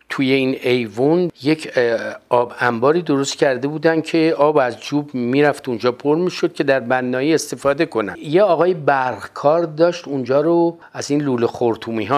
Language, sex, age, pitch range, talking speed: Persian, male, 50-69, 110-145 Hz, 160 wpm